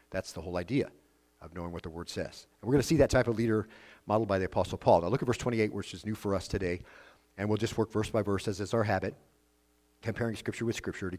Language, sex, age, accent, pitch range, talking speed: English, male, 50-69, American, 95-120 Hz, 275 wpm